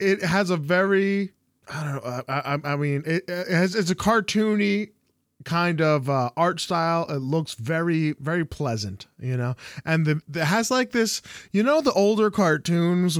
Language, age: English, 20-39